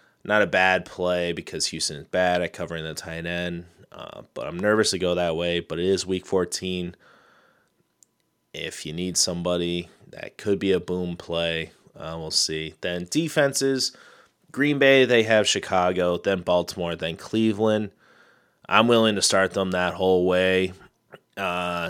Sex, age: male, 30-49